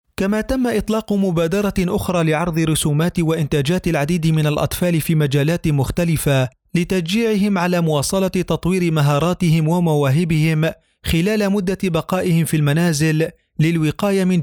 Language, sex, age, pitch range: Arabic, male, 40-59, 160-190 Hz